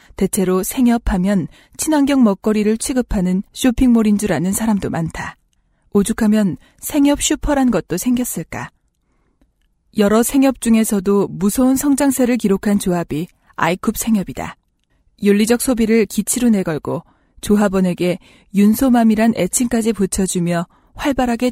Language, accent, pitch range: Korean, native, 185-240 Hz